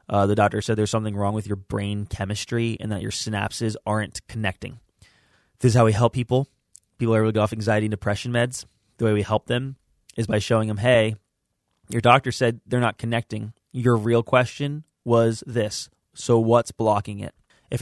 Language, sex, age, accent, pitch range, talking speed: English, male, 20-39, American, 110-140 Hz, 200 wpm